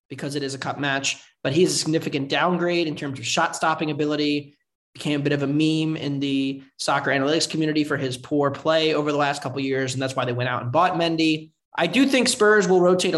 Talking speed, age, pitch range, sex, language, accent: 240 wpm, 20-39, 140-165 Hz, male, English, American